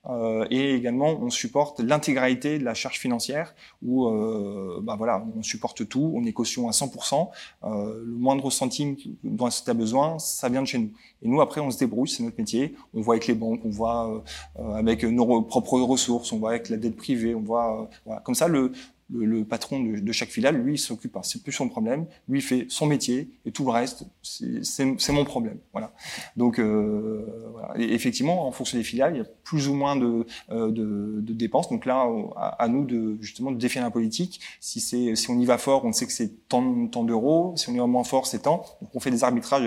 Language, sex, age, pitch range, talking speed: French, male, 20-39, 115-140 Hz, 240 wpm